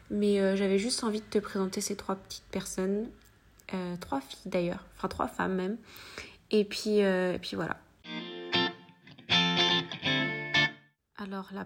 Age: 20-39